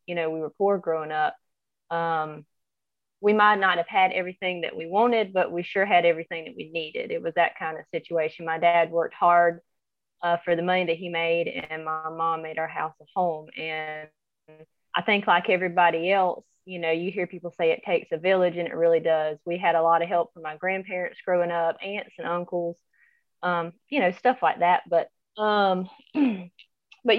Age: 20-39